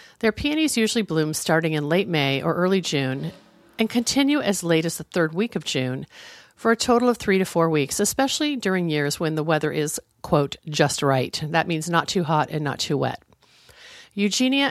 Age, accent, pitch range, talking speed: 50-69, American, 150-210 Hz, 200 wpm